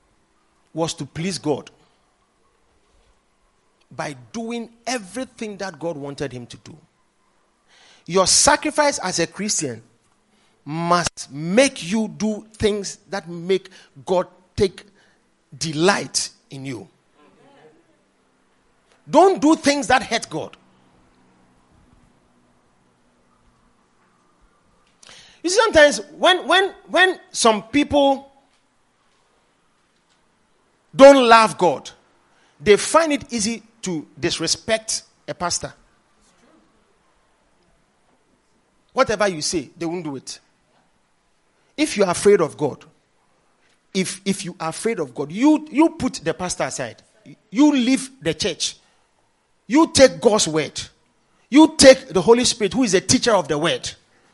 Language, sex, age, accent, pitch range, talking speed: English, male, 40-59, Nigerian, 160-265 Hz, 110 wpm